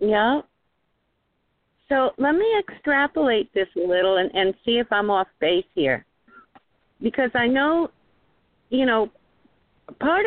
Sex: female